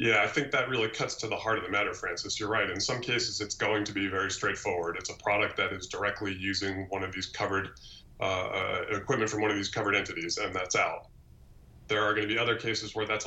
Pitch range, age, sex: 100-110 Hz, 20-39, male